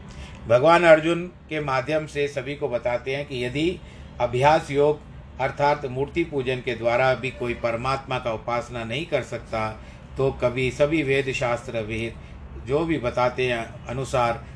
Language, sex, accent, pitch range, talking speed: Hindi, male, native, 120-145 Hz, 155 wpm